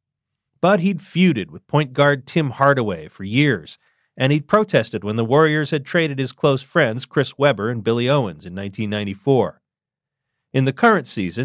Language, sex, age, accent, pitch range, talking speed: English, male, 40-59, American, 110-150 Hz, 170 wpm